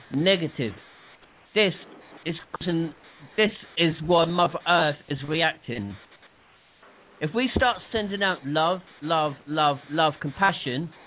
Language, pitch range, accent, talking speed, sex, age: English, 150-200 Hz, British, 110 wpm, male, 40-59